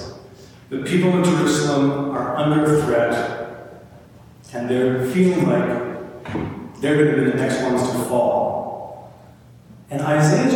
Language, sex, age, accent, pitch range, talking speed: English, male, 40-59, American, 140-195 Hz, 120 wpm